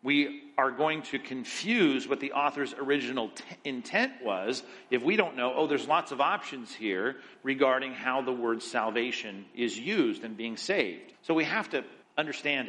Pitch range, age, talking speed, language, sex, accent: 120-145 Hz, 50-69, 170 wpm, English, male, American